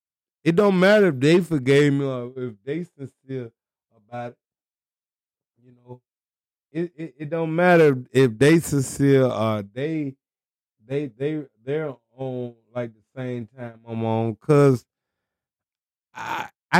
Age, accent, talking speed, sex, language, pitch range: 20-39, American, 130 wpm, male, English, 105-150 Hz